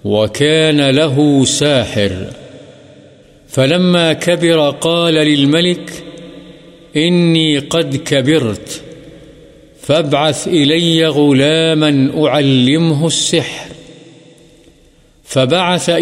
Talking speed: 60 wpm